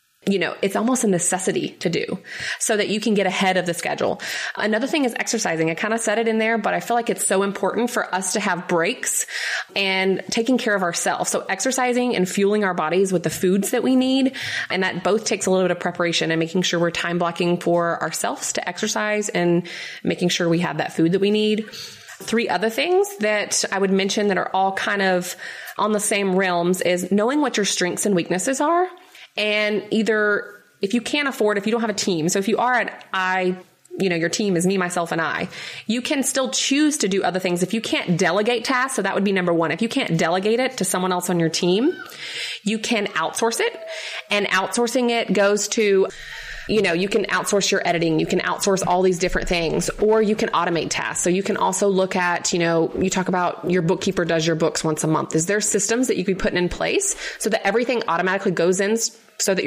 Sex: female